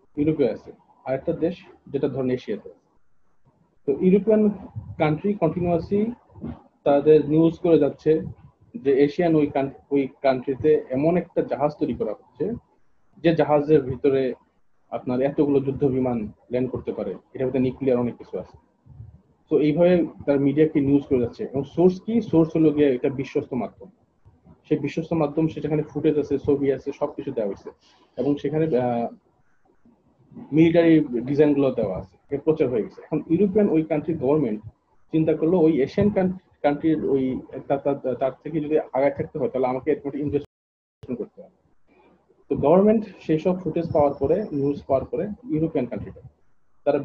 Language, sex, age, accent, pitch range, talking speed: Bengali, male, 40-59, native, 135-165 Hz, 105 wpm